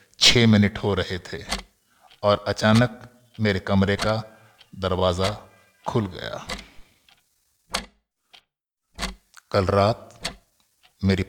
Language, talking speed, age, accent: Hindi, 85 wpm, 60-79, native